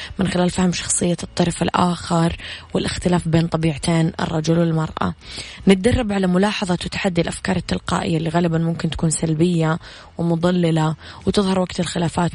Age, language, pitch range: 20-39, Arabic, 165-190 Hz